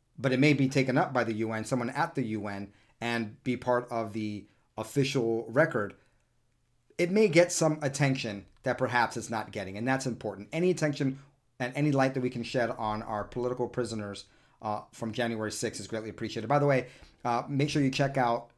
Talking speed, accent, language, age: 200 wpm, American, English, 40-59